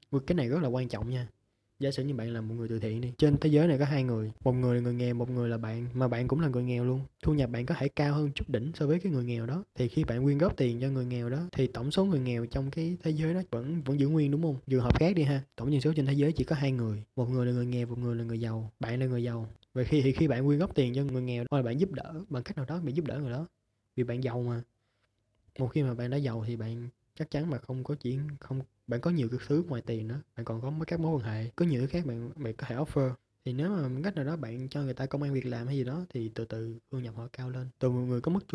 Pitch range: 120-150 Hz